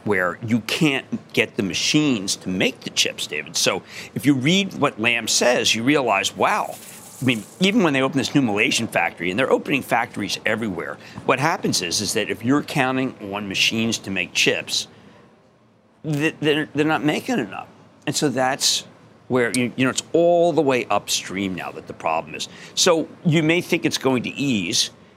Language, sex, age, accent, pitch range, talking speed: English, male, 50-69, American, 120-170 Hz, 185 wpm